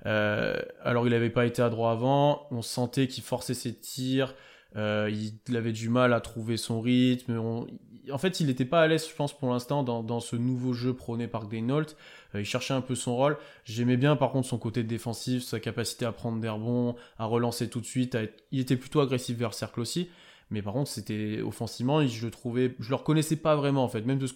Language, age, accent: French, 20-39, French